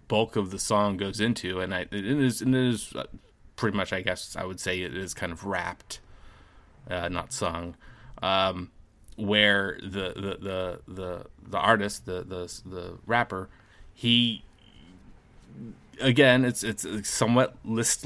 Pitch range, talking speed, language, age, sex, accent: 90-110 Hz, 155 wpm, English, 30-49, male, American